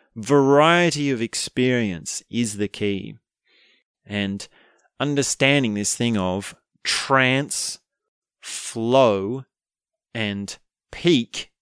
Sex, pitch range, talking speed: male, 100-130 Hz, 75 wpm